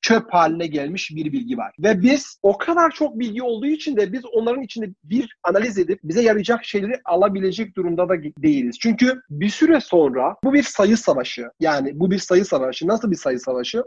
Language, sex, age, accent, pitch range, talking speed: Turkish, male, 40-59, native, 175-250 Hz, 195 wpm